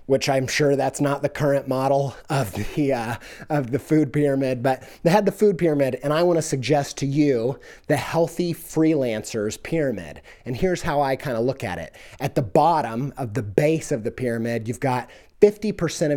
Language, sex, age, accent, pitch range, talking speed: English, male, 30-49, American, 125-170 Hz, 195 wpm